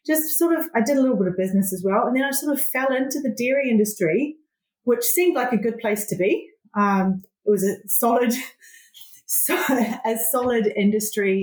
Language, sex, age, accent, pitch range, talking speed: English, female, 30-49, Australian, 185-235 Hz, 205 wpm